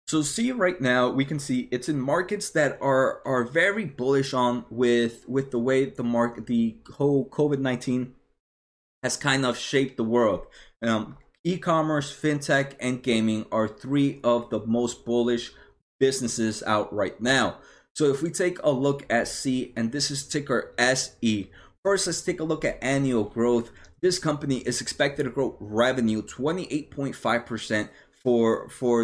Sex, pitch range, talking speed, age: male, 120-145 Hz, 160 wpm, 20-39